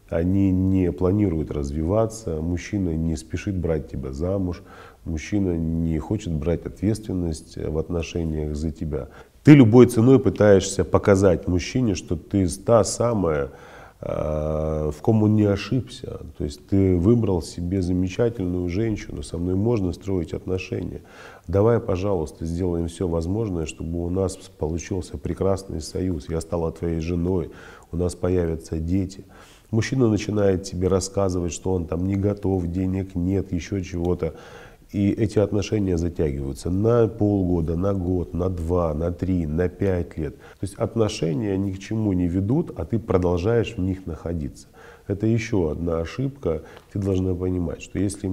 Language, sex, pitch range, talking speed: Russian, male, 85-100 Hz, 145 wpm